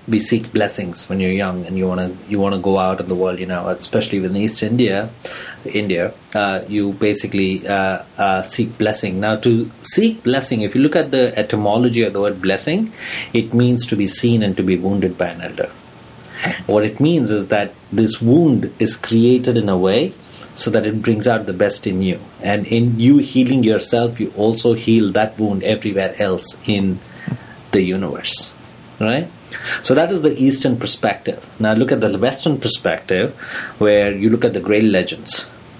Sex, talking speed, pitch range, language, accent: male, 190 wpm, 100-120 Hz, English, Indian